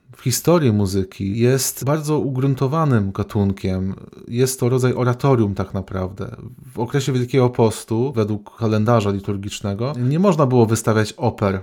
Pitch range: 105-125 Hz